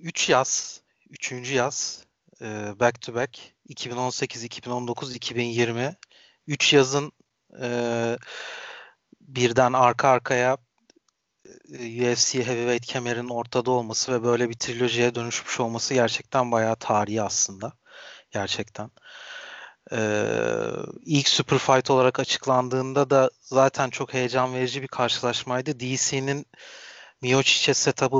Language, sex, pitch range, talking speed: Turkish, male, 120-140 Hz, 100 wpm